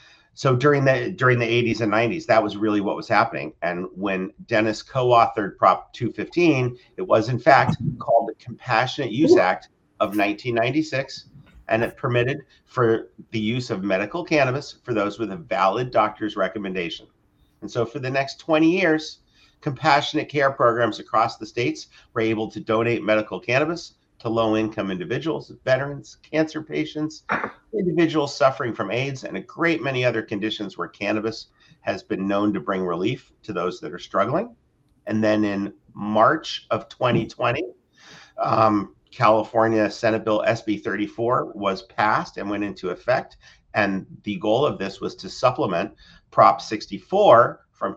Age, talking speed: 50-69, 155 wpm